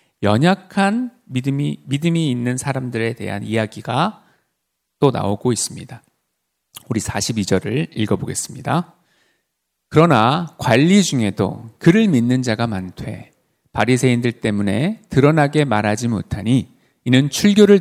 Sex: male